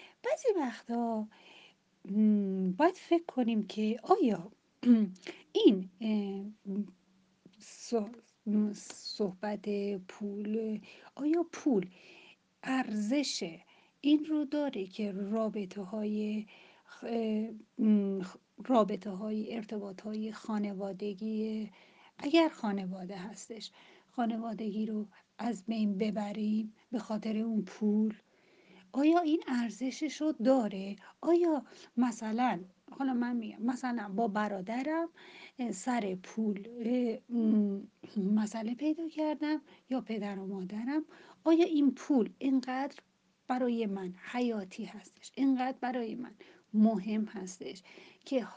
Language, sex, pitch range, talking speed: Persian, female, 205-255 Hz, 85 wpm